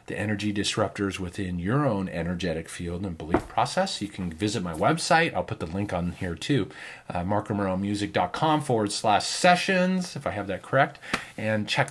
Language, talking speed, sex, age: English, 180 wpm, male, 40-59